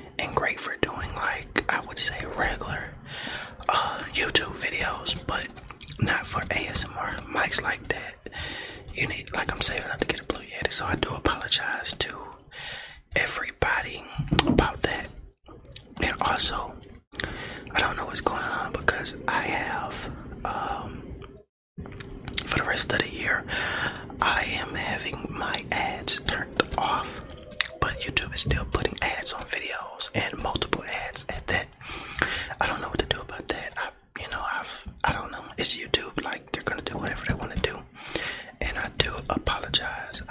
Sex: male